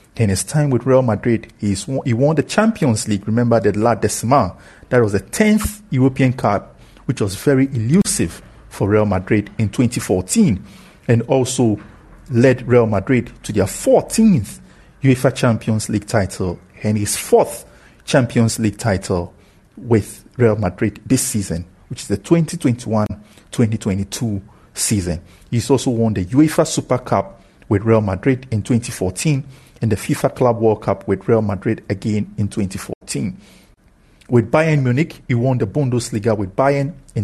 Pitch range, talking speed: 105-130 Hz, 150 wpm